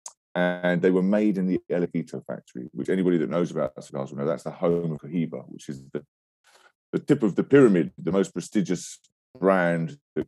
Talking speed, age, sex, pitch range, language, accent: 205 wpm, 30-49, male, 70-90 Hz, English, British